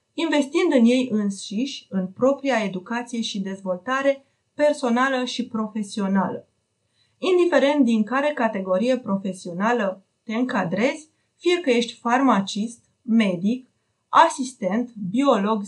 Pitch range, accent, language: 210-265 Hz, native, Romanian